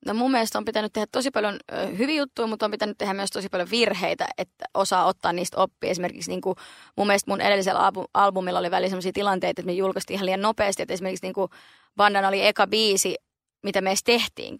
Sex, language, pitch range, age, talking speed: female, Finnish, 185-210 Hz, 20-39, 210 wpm